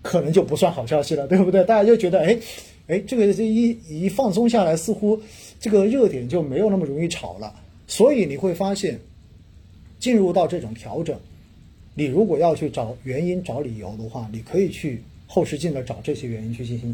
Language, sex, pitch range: Chinese, male, 115-175 Hz